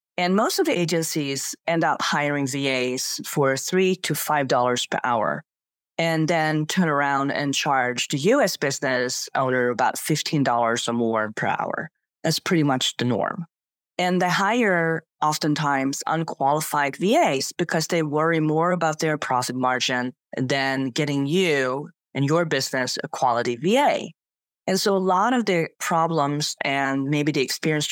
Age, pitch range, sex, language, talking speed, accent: 30-49, 135-165 Hz, female, English, 150 wpm, American